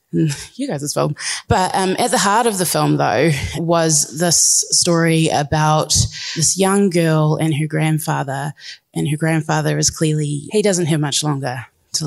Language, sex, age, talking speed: English, female, 20-39, 170 wpm